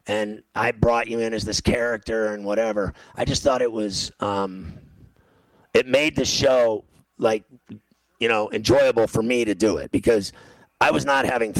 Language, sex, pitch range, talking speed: English, male, 105-120 Hz, 170 wpm